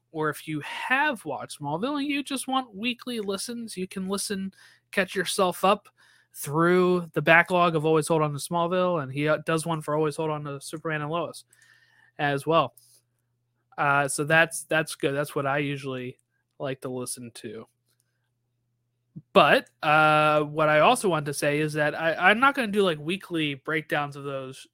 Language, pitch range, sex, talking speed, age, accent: English, 140-170 Hz, male, 180 wpm, 20-39, American